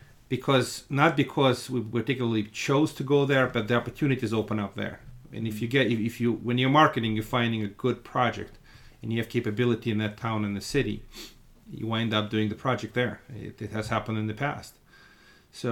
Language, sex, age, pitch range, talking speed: English, male, 40-59, 105-120 Hz, 205 wpm